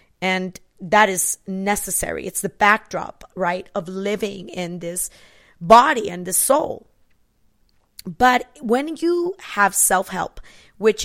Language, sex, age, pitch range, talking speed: English, female, 30-49, 185-220 Hz, 120 wpm